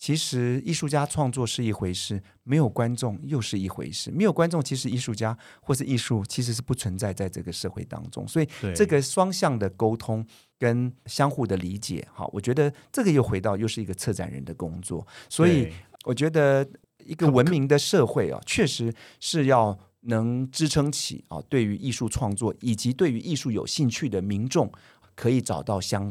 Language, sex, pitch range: Chinese, male, 105-140 Hz